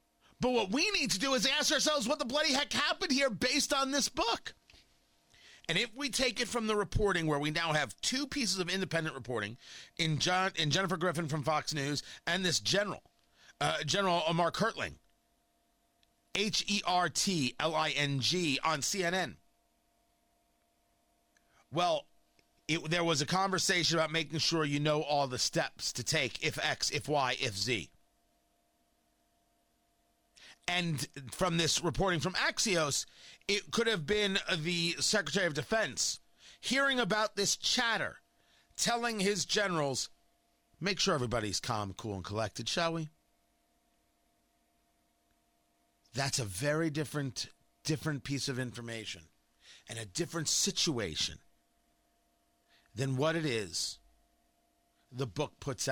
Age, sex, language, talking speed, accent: 40-59, male, English, 130 wpm, American